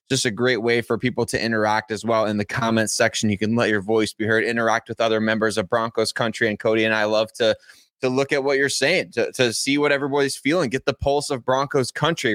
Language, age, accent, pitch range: English, 20-39, American, 110-130 Hz